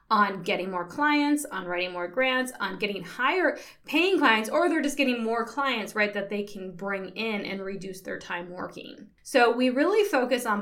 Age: 20-39